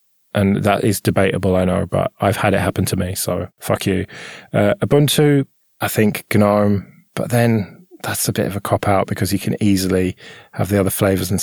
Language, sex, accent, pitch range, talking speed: English, male, British, 100-135 Hz, 200 wpm